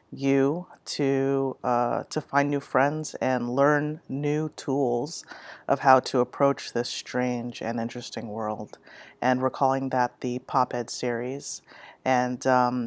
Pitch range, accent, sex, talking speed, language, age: 125-140 Hz, American, female, 135 wpm, English, 30-49